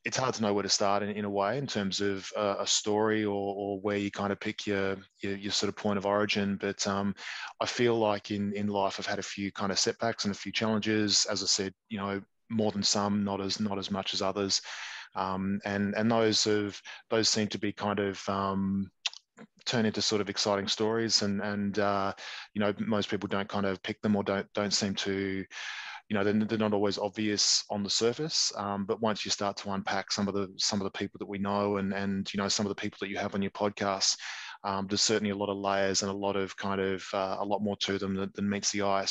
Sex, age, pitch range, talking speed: male, 20-39, 100-105 Hz, 250 wpm